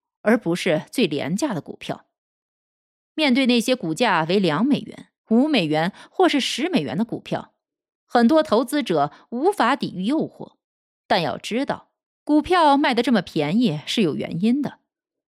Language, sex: Chinese, female